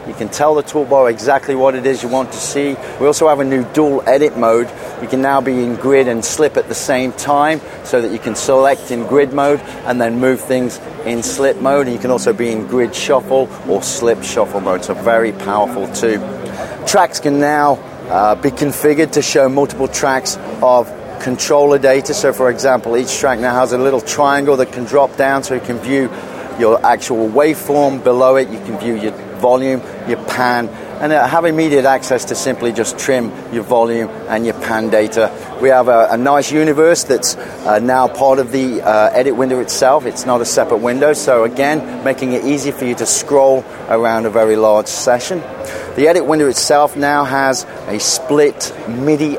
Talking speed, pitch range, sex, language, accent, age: 200 wpm, 120-145 Hz, male, English, British, 40-59